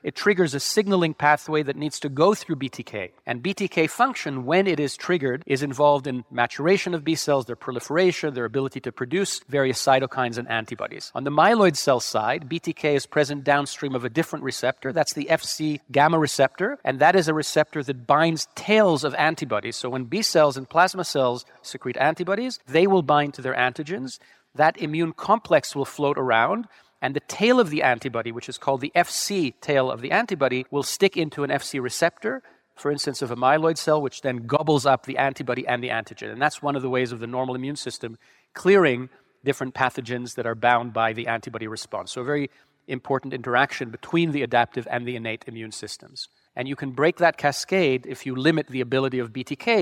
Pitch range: 125-160 Hz